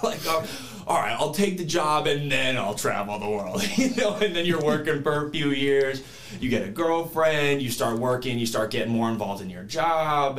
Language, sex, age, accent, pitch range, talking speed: English, male, 20-39, American, 105-140 Hz, 215 wpm